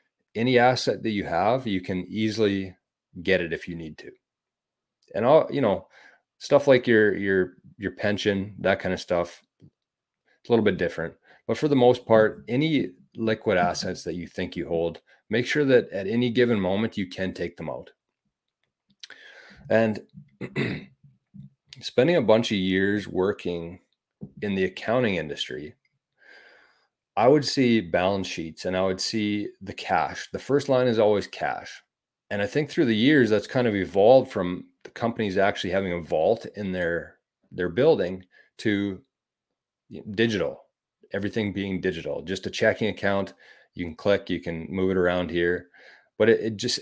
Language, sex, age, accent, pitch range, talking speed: English, male, 30-49, American, 90-115 Hz, 165 wpm